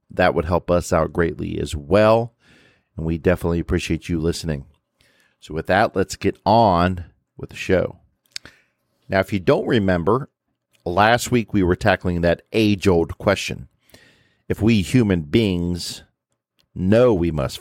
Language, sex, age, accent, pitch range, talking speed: English, male, 50-69, American, 80-95 Hz, 150 wpm